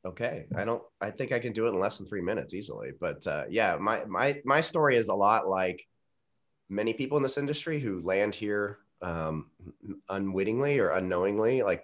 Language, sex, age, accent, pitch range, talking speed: English, male, 30-49, American, 80-95 Hz, 200 wpm